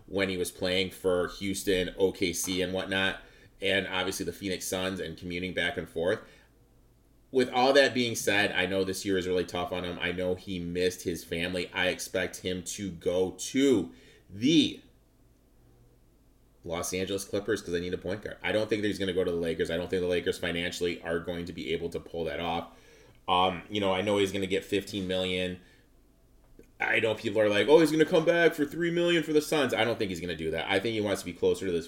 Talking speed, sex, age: 235 wpm, male, 30-49